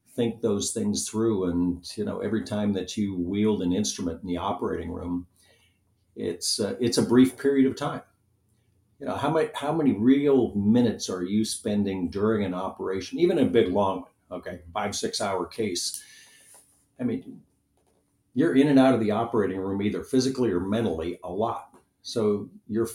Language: English